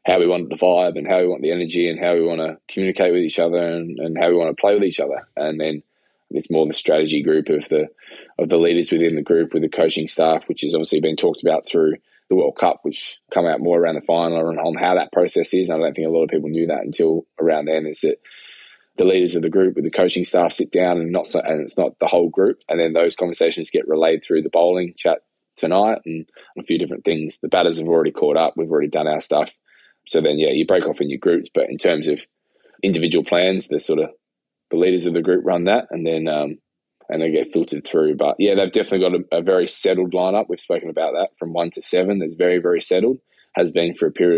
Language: English